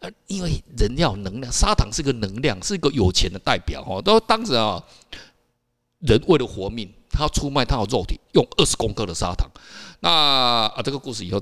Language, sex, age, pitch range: Chinese, male, 50-69, 110-175 Hz